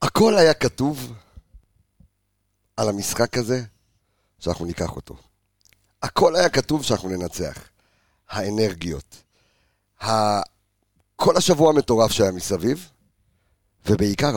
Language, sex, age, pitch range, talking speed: Hebrew, male, 50-69, 95-120 Hz, 90 wpm